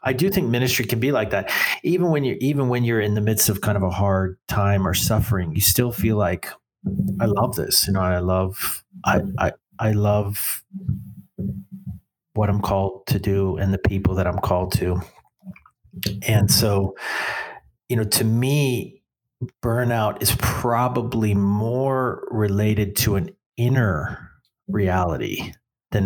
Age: 40-59